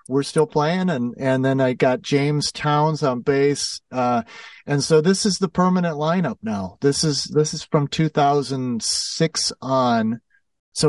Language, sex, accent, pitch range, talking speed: English, male, American, 130-180 Hz, 160 wpm